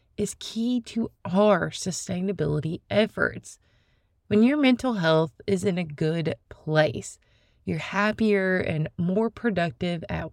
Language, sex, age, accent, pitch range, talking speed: English, female, 20-39, American, 175-225 Hz, 120 wpm